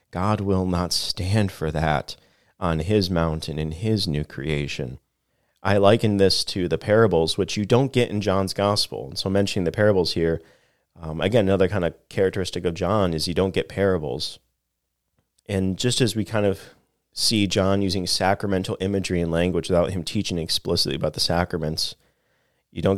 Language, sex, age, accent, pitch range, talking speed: English, male, 30-49, American, 80-95 Hz, 170 wpm